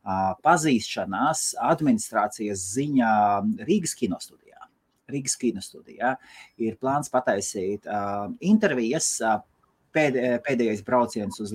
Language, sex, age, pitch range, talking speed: English, male, 30-49, 100-140 Hz, 75 wpm